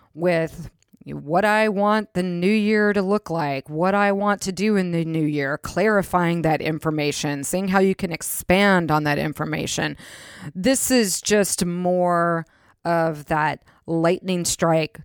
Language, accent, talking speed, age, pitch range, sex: English, American, 150 wpm, 30-49, 160-210 Hz, female